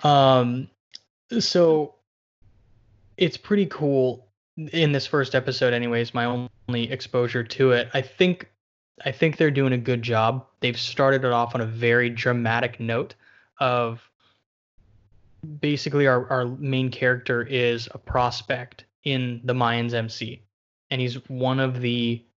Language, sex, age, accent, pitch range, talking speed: English, male, 20-39, American, 120-135 Hz, 135 wpm